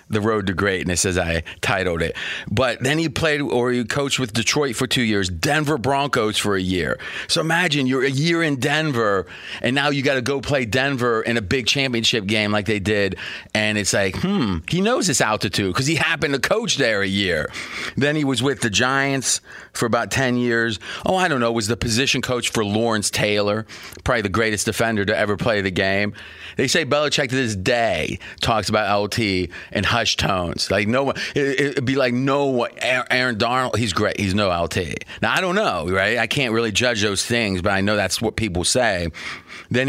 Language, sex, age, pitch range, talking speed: English, male, 30-49, 105-135 Hz, 210 wpm